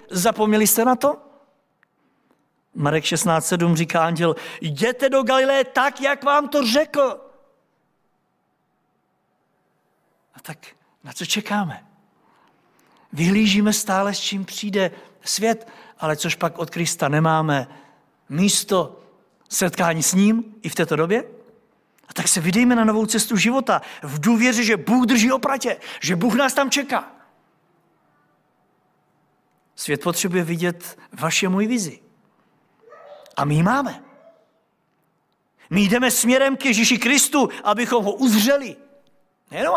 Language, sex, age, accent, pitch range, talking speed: Czech, male, 50-69, native, 165-245 Hz, 120 wpm